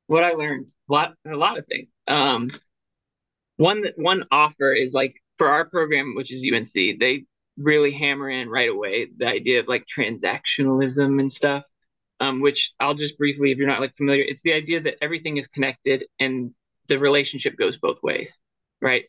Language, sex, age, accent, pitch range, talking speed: English, male, 20-39, American, 135-160 Hz, 180 wpm